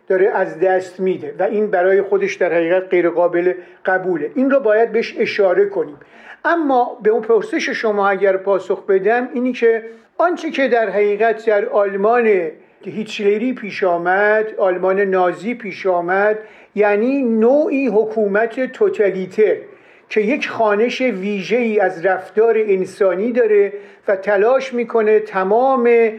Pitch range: 195-255 Hz